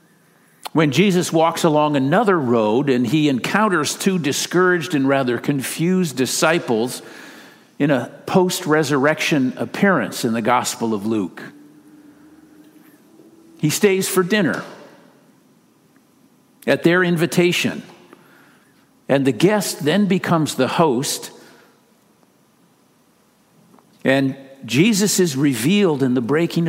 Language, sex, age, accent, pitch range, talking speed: English, male, 50-69, American, 140-195 Hz, 100 wpm